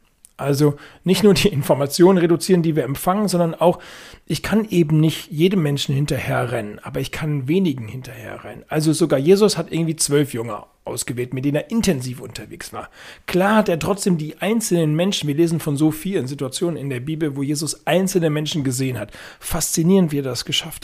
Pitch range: 140-175 Hz